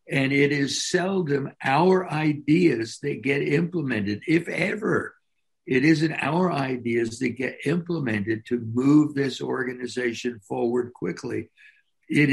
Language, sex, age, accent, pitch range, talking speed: English, male, 60-79, American, 115-155 Hz, 120 wpm